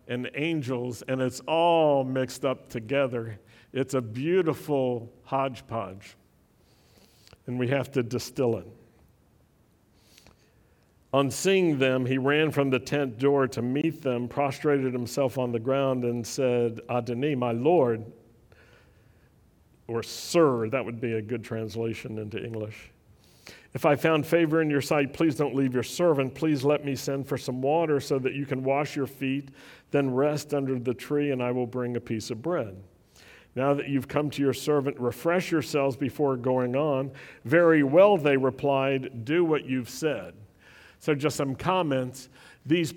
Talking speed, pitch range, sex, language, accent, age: 160 wpm, 125-150 Hz, male, English, American, 50-69